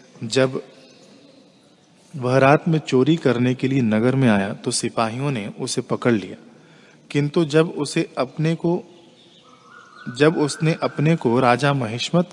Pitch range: 120-150 Hz